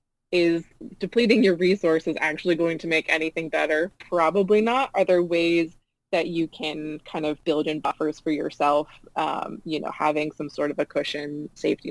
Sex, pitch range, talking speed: female, 155-185 Hz, 175 wpm